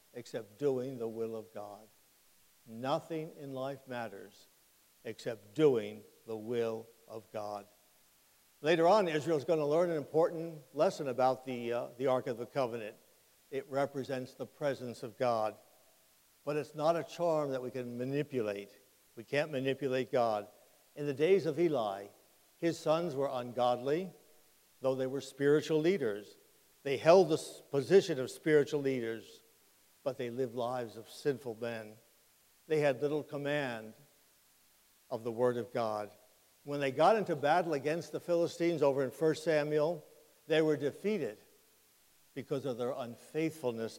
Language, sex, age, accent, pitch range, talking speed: English, male, 60-79, American, 120-155 Hz, 145 wpm